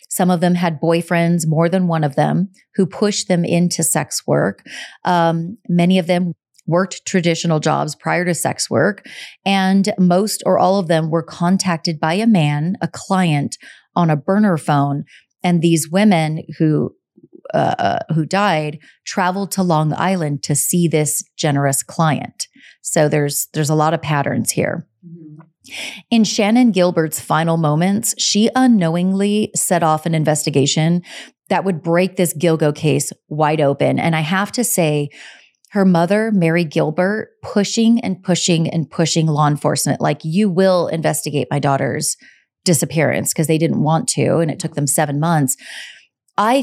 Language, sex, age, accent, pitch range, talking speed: English, female, 30-49, American, 155-185 Hz, 160 wpm